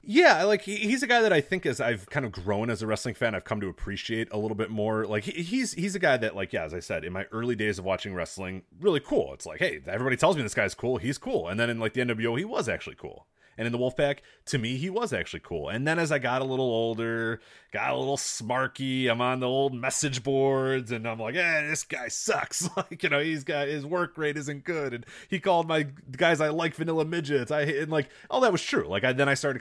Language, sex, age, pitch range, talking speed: English, male, 30-49, 100-145 Hz, 270 wpm